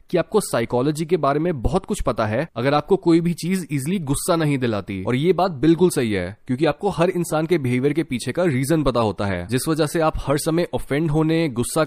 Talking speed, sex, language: 240 wpm, male, Hindi